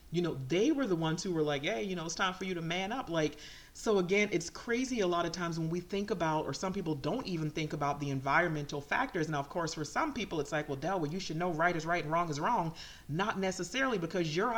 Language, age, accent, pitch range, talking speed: English, 40-59, American, 150-185 Hz, 275 wpm